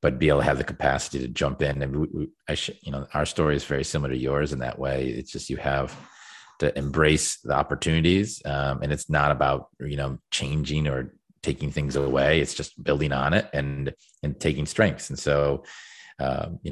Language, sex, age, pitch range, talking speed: English, male, 30-49, 70-80 Hz, 215 wpm